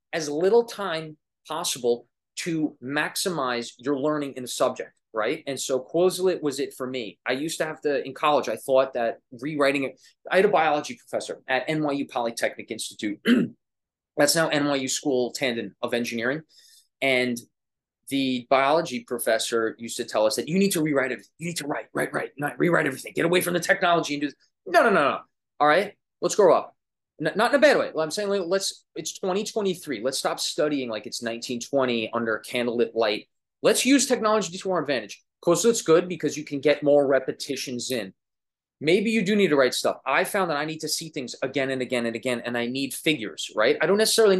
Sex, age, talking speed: male, 20-39, 205 wpm